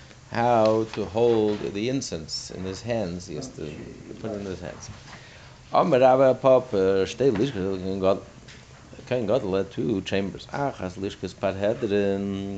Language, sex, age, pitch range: English, male, 50-69, 95-130 Hz